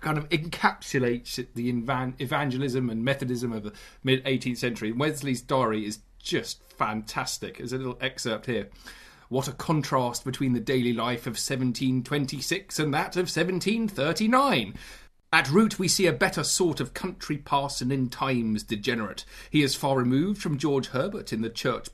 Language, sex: English, male